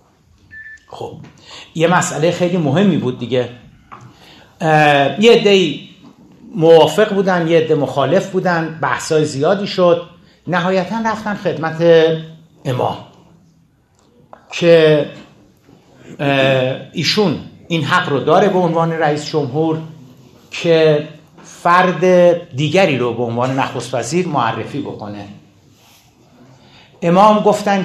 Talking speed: 95 wpm